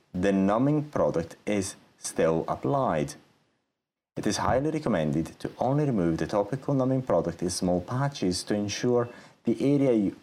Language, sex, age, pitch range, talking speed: English, male, 30-49, 85-135 Hz, 145 wpm